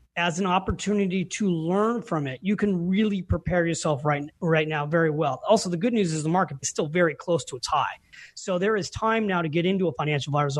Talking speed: 240 wpm